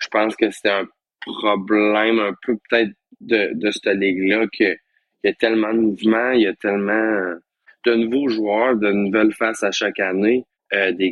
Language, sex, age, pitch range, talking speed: French, male, 20-39, 95-115 Hz, 195 wpm